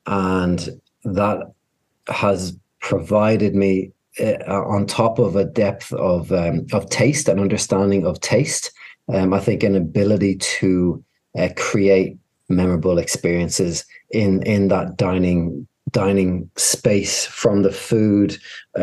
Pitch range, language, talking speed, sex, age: 95-105 Hz, English, 120 wpm, male, 30-49